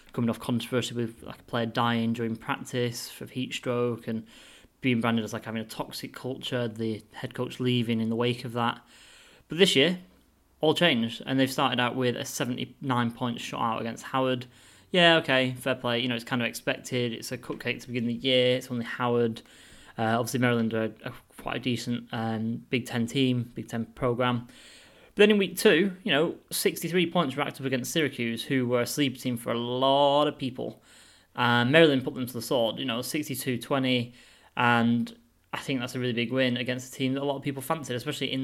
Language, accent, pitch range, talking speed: English, British, 115-130 Hz, 210 wpm